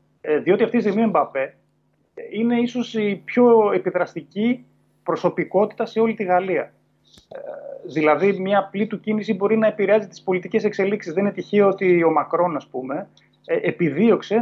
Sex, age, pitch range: male, 30-49, 160-220 Hz